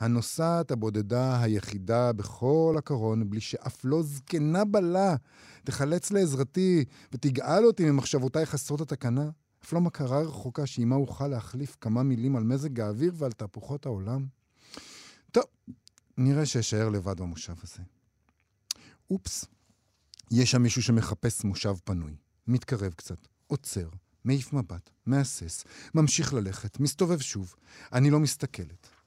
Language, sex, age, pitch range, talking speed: Hebrew, male, 50-69, 105-140 Hz, 120 wpm